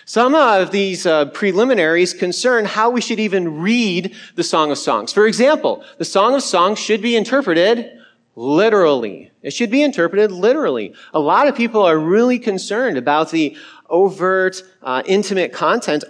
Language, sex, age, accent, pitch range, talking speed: English, male, 40-59, American, 160-225 Hz, 160 wpm